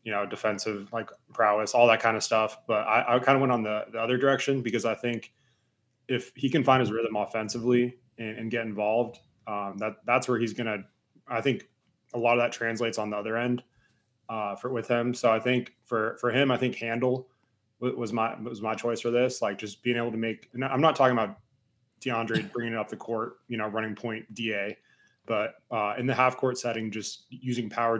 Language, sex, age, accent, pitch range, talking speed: English, male, 20-39, American, 110-125 Hz, 220 wpm